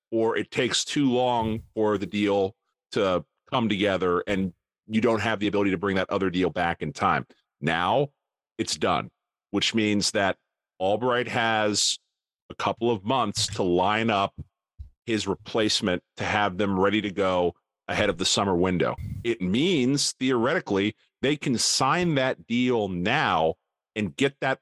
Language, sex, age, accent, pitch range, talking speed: English, male, 40-59, American, 100-125 Hz, 160 wpm